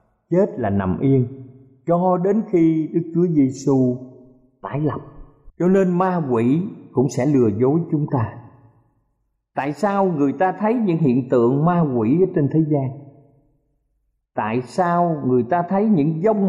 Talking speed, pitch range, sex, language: 155 wpm, 135-185 Hz, male, Vietnamese